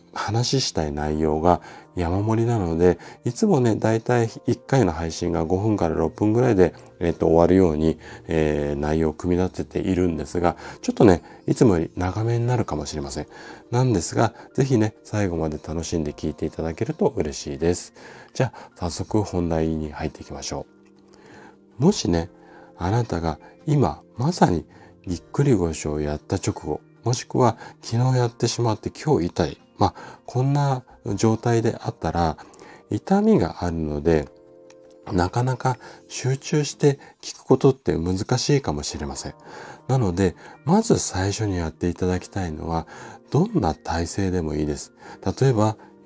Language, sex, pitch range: Japanese, male, 80-120 Hz